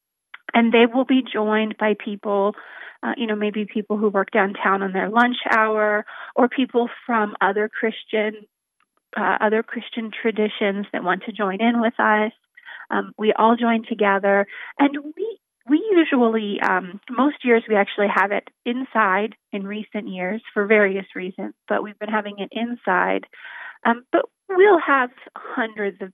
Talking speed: 160 wpm